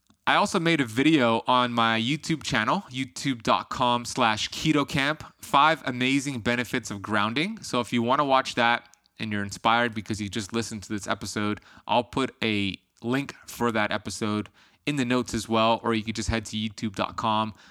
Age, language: 20-39, English